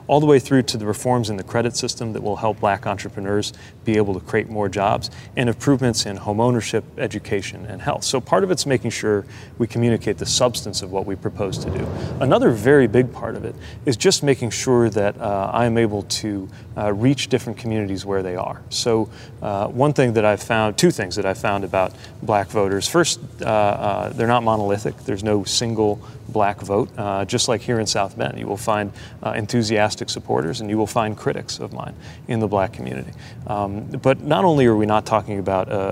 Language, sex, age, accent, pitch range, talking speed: English, male, 30-49, American, 100-125 Hz, 215 wpm